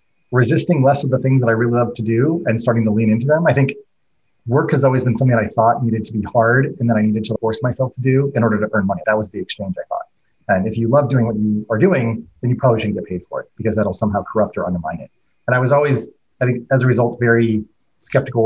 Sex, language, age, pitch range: male, English, 30-49, 110-135 Hz